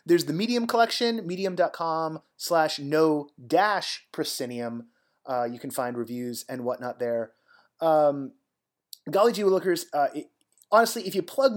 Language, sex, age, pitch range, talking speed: English, male, 30-49, 115-185 Hz, 130 wpm